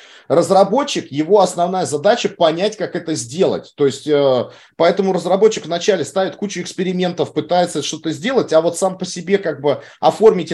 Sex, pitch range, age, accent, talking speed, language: male, 155-200 Hz, 30-49, native, 160 wpm, Russian